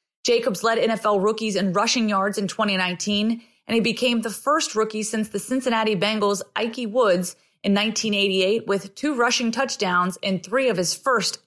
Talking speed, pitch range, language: 165 wpm, 200-245 Hz, English